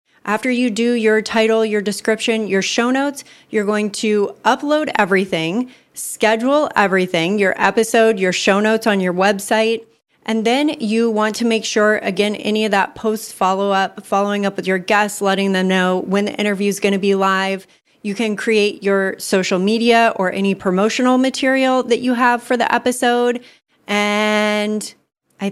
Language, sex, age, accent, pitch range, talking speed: English, female, 30-49, American, 200-240 Hz, 170 wpm